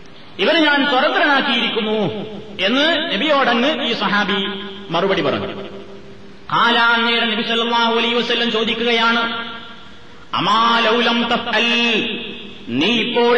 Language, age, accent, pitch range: Malayalam, 30-49, native, 215-240 Hz